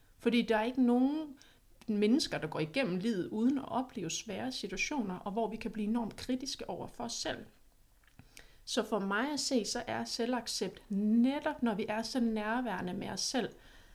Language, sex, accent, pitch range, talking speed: Danish, female, native, 190-240 Hz, 185 wpm